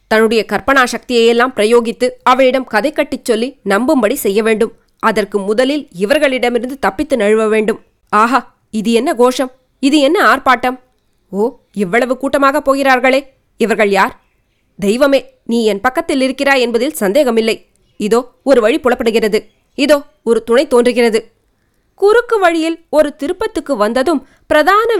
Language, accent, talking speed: Tamil, native, 120 wpm